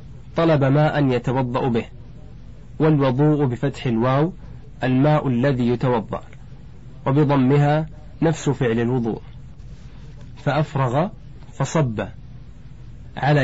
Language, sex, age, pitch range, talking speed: Arabic, male, 30-49, 125-150 Hz, 75 wpm